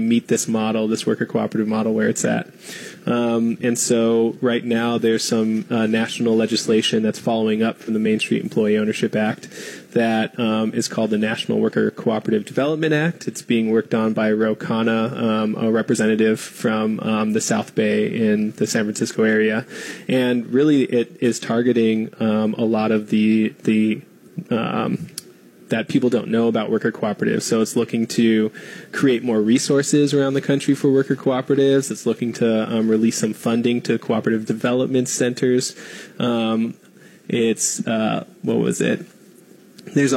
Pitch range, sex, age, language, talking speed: 110-135 Hz, male, 20-39, English, 160 wpm